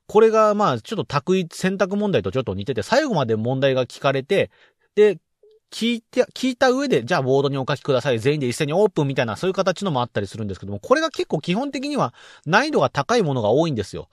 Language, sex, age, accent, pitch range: Japanese, male, 40-59, native, 125-195 Hz